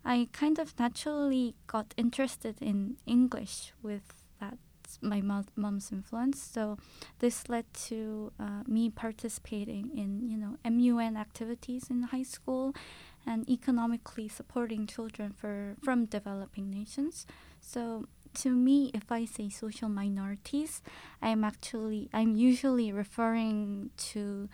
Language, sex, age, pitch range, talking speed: English, female, 20-39, 210-245 Hz, 120 wpm